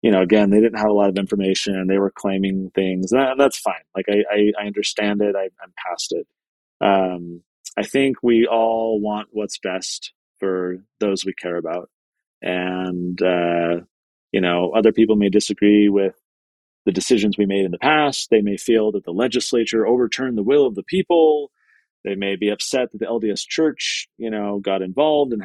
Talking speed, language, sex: 190 wpm, English, male